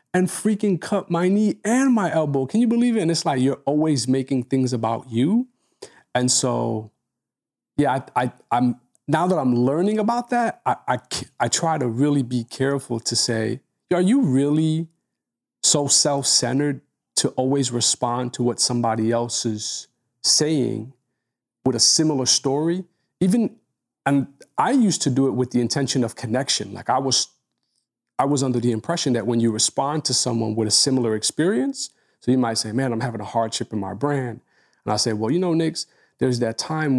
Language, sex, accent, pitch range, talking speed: English, male, American, 120-150 Hz, 185 wpm